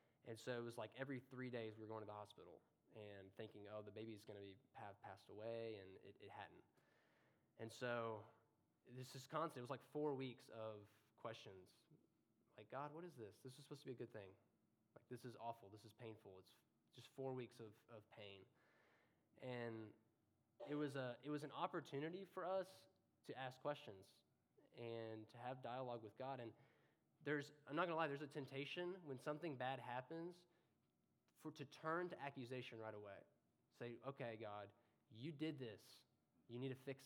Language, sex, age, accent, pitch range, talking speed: English, male, 20-39, American, 115-145 Hz, 190 wpm